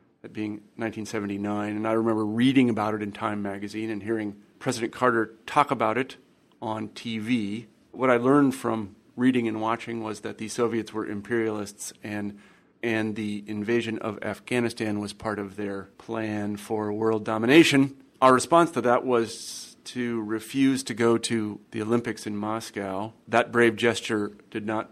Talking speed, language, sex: 160 wpm, English, male